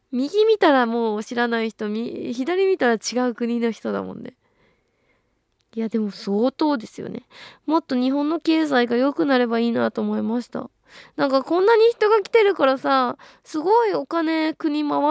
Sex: female